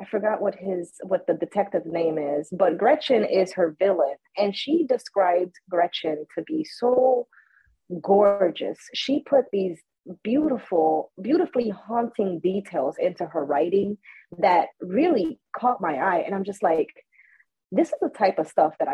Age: 30-49